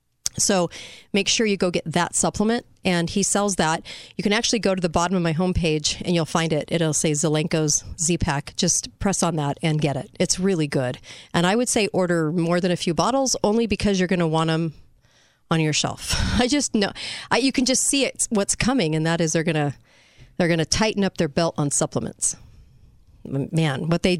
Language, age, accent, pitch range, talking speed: English, 40-59, American, 155-190 Hz, 220 wpm